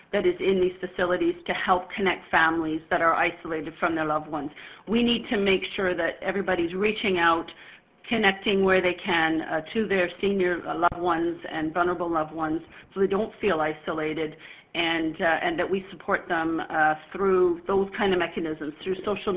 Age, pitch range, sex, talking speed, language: 40-59, 170-195 Hz, female, 185 wpm, English